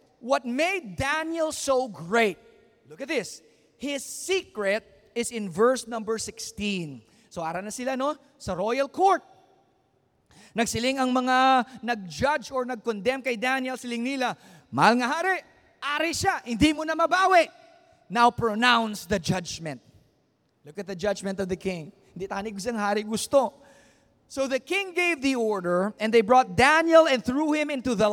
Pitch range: 185-265 Hz